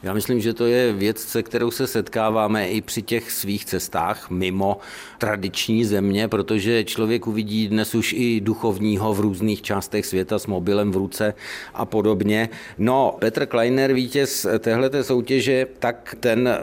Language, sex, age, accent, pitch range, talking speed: Czech, male, 50-69, native, 105-130 Hz, 155 wpm